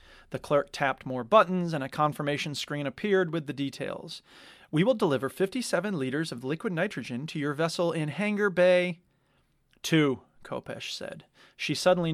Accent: American